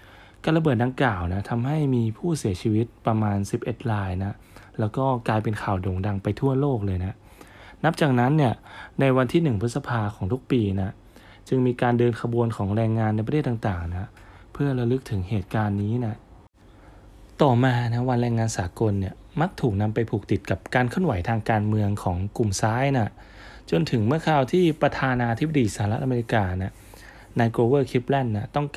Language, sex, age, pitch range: Thai, male, 20-39, 105-130 Hz